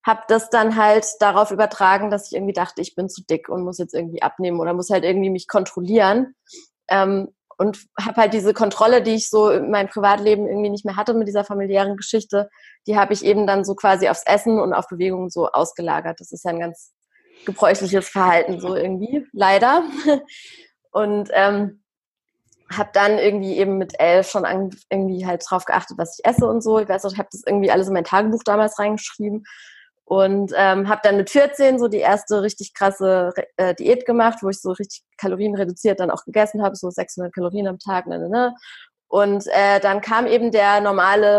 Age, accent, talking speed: 20-39, German, 200 wpm